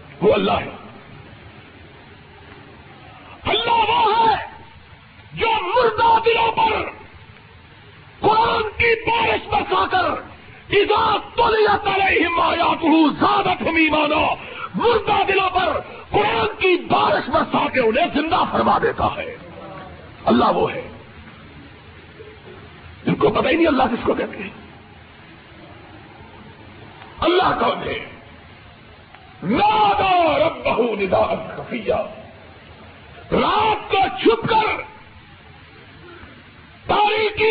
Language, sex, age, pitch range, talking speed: Urdu, male, 50-69, 320-435 Hz, 100 wpm